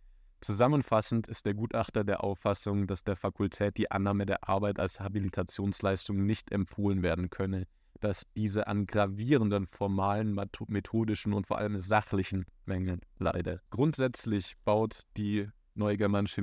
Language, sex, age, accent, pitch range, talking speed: German, male, 20-39, German, 95-110 Hz, 130 wpm